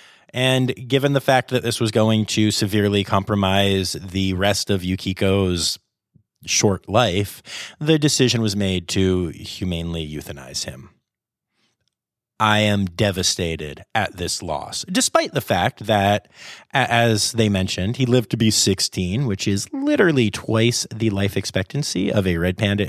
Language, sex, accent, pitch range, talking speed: English, male, American, 95-140 Hz, 140 wpm